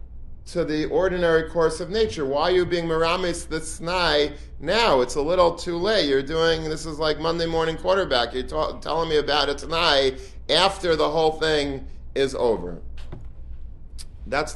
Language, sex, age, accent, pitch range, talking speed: English, male, 40-59, American, 120-155 Hz, 170 wpm